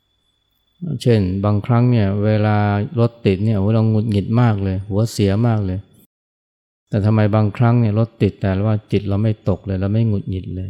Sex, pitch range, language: male, 95-110 Hz, Thai